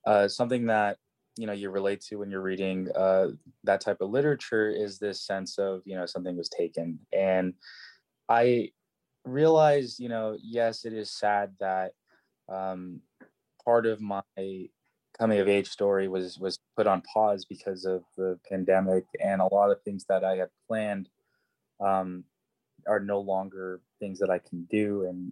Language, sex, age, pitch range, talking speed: English, male, 20-39, 90-105 Hz, 170 wpm